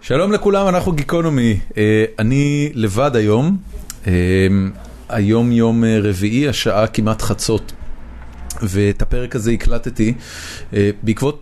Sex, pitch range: male, 100-120 Hz